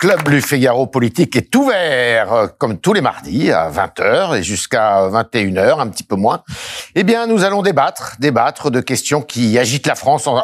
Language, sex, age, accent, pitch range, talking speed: French, male, 60-79, French, 130-220 Hz, 170 wpm